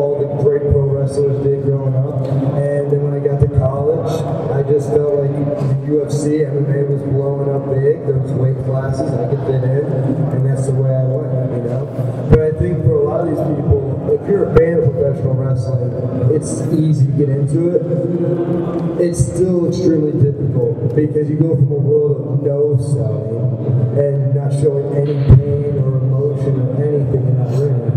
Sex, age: male, 30-49